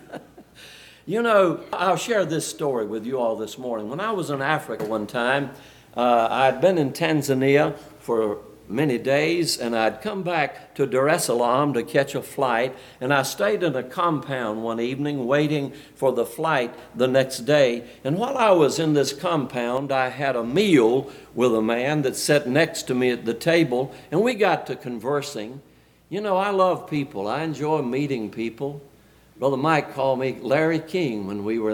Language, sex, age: English, male, 60-79